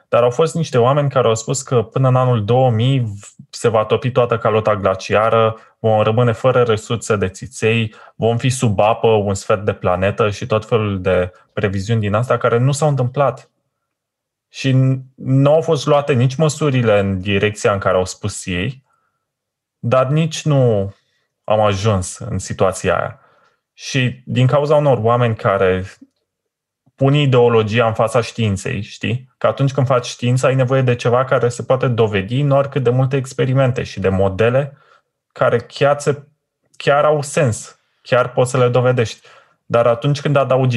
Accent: native